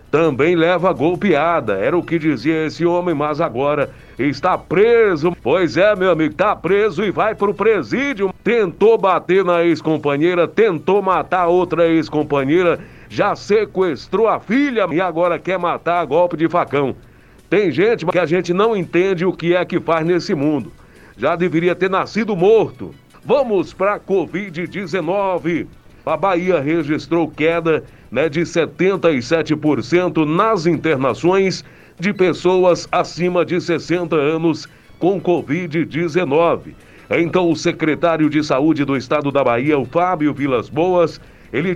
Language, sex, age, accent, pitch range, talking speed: Portuguese, male, 60-79, Brazilian, 160-185 Hz, 140 wpm